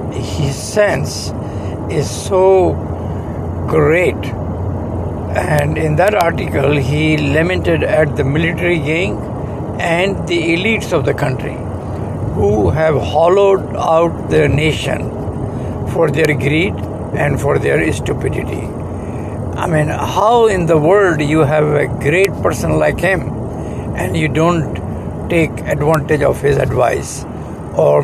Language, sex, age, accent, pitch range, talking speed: English, male, 60-79, Indian, 120-160 Hz, 120 wpm